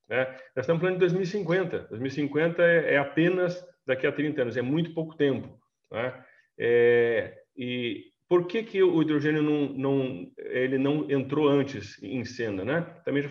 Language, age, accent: Portuguese, 40-59, Brazilian